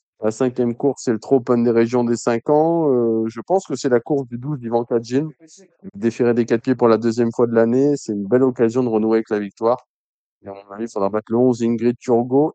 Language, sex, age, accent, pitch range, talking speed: French, male, 20-39, French, 110-130 Hz, 245 wpm